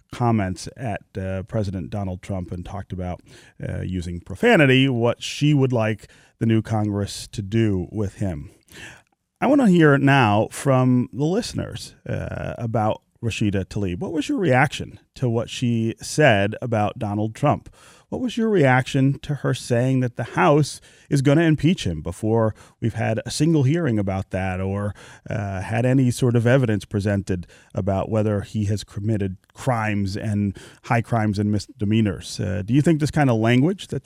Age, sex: 30-49, male